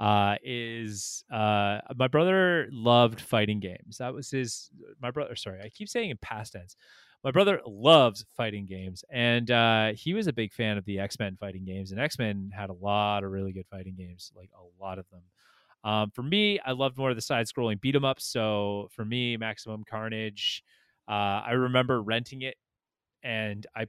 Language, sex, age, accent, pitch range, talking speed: English, male, 30-49, American, 105-130 Hz, 185 wpm